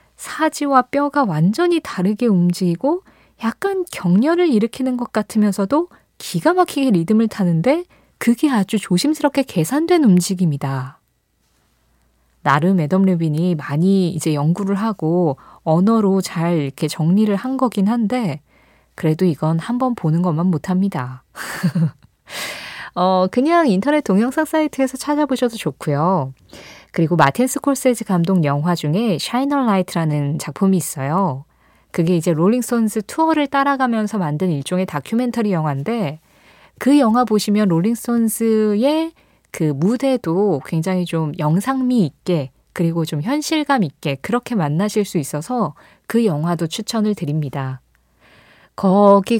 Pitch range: 165-245 Hz